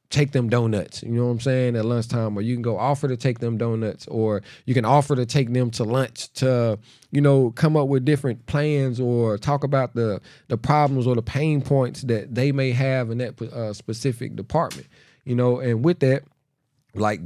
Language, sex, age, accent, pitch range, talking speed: English, male, 40-59, American, 110-135 Hz, 210 wpm